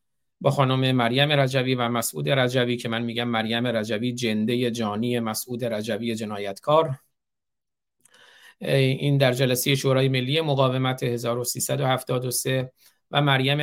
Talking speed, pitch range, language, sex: 115 wpm, 120-140 Hz, Persian, male